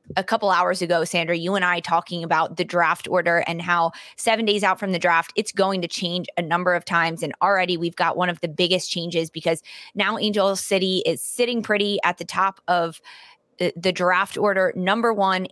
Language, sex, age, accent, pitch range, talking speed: English, female, 20-39, American, 175-200 Hz, 215 wpm